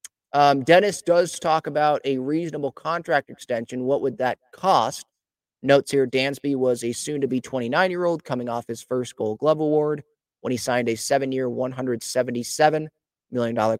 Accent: American